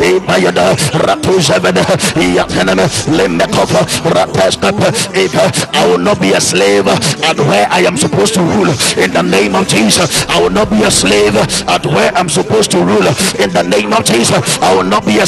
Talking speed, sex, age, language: 90 wpm, male, 60-79, English